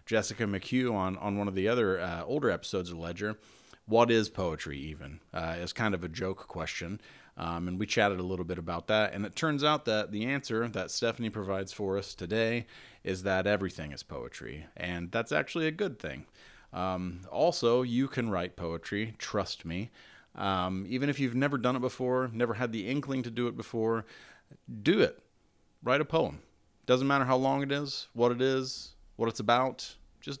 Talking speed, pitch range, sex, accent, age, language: 195 wpm, 95-125 Hz, male, American, 30-49, English